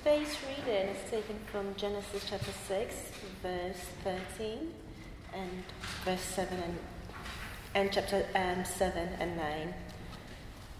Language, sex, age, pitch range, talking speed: English, female, 30-49, 175-215 Hz, 110 wpm